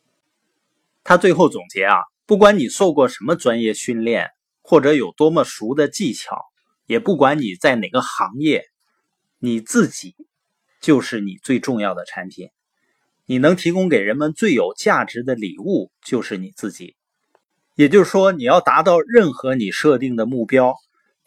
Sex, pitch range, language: male, 120-185 Hz, Chinese